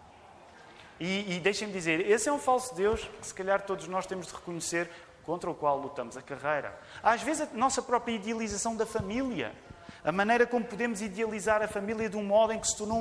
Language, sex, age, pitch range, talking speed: Portuguese, male, 30-49, 150-210 Hz, 210 wpm